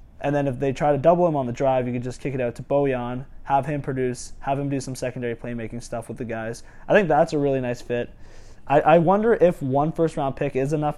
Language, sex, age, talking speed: English, male, 20-39, 260 wpm